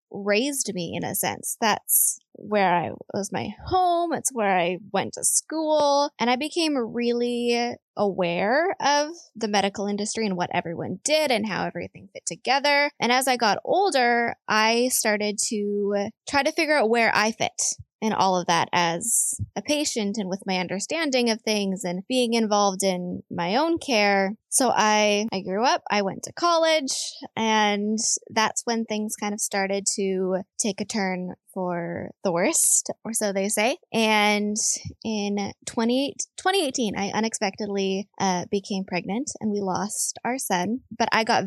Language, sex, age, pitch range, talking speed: English, female, 10-29, 195-245 Hz, 165 wpm